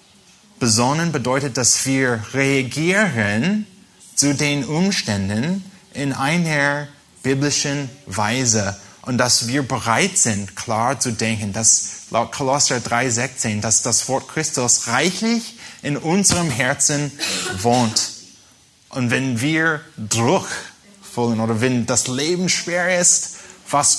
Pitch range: 110-145 Hz